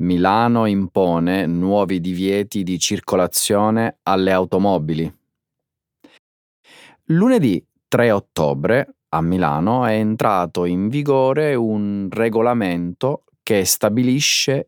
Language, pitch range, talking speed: Italian, 90-125 Hz, 85 wpm